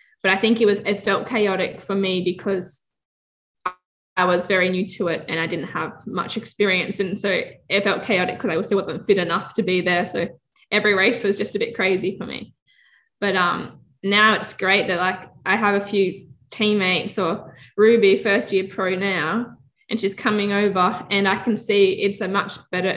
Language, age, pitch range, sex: English, 10-29, 185-215 Hz, female